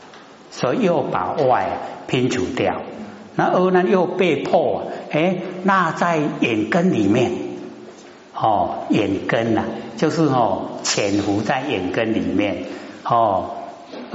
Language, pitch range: Chinese, 120-180 Hz